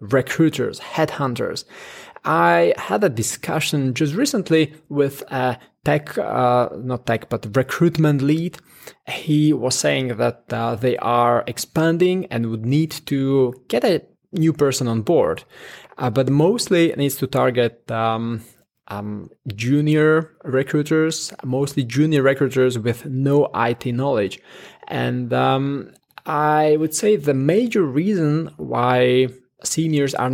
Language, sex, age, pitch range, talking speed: English, male, 20-39, 125-155 Hz, 125 wpm